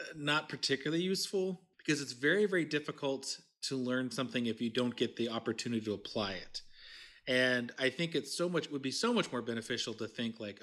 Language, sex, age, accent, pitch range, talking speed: English, male, 30-49, American, 120-165 Hz, 205 wpm